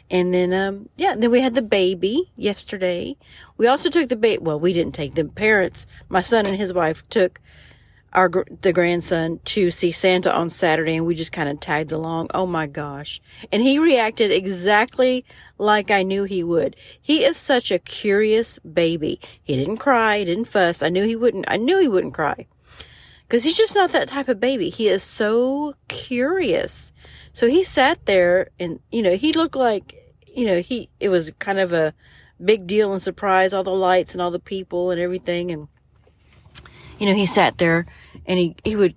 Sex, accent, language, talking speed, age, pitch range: female, American, English, 195 wpm, 40-59, 175-245 Hz